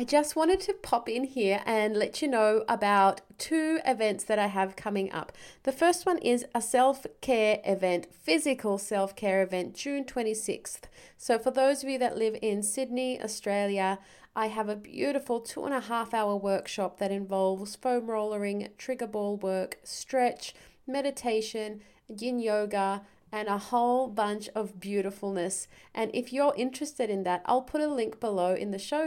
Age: 30-49